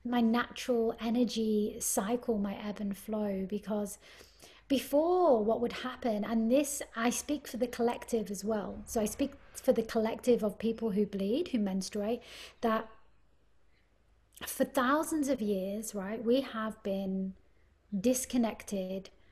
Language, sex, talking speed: English, female, 135 wpm